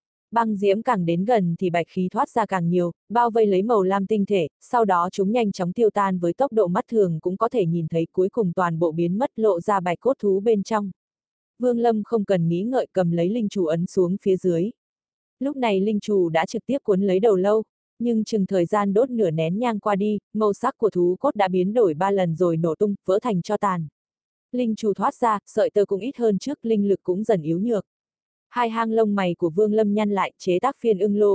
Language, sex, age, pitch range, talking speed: Vietnamese, female, 20-39, 180-220 Hz, 250 wpm